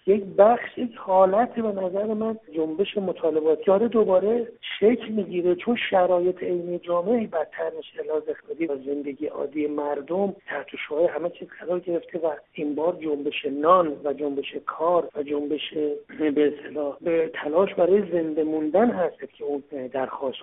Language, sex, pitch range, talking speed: Persian, male, 150-200 Hz, 145 wpm